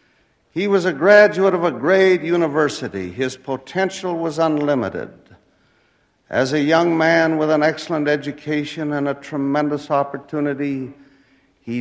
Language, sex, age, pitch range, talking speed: English, male, 60-79, 125-155 Hz, 125 wpm